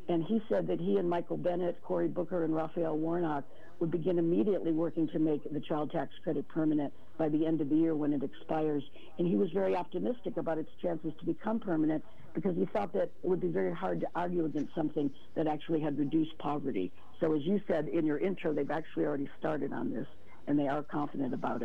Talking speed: 220 wpm